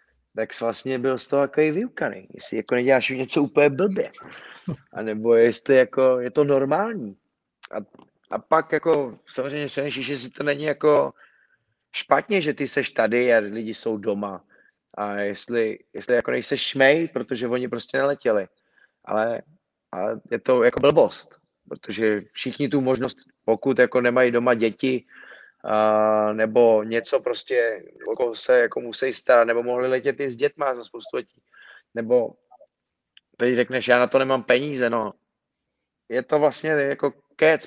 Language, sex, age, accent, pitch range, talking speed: Czech, male, 30-49, native, 115-140 Hz, 160 wpm